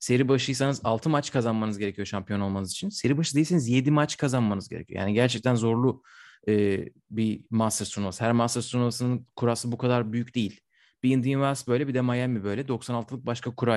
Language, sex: Turkish, male